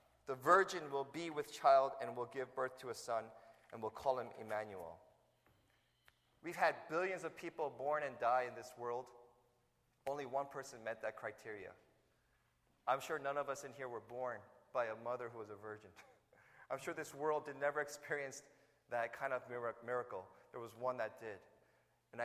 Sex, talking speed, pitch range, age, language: male, 185 wpm, 120-145 Hz, 30-49, English